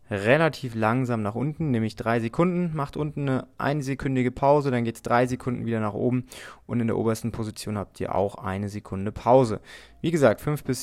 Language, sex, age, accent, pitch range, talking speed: German, male, 20-39, German, 110-135 Hz, 195 wpm